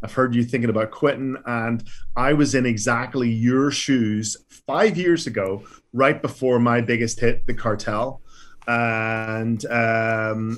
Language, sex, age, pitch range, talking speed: English, male, 30-49, 115-145 Hz, 140 wpm